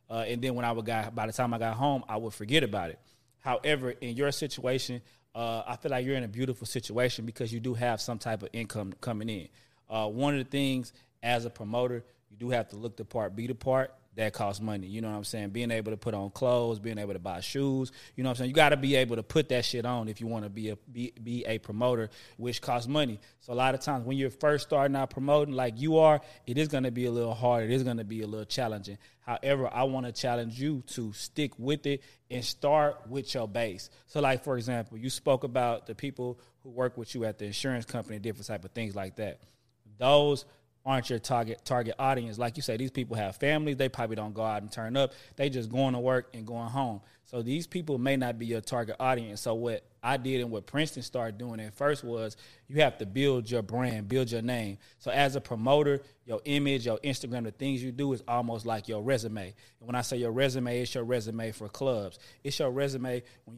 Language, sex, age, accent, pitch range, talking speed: English, male, 30-49, American, 115-130 Hz, 250 wpm